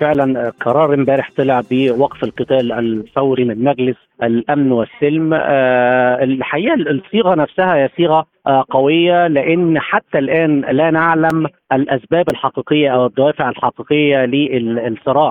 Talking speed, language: 110 wpm, Arabic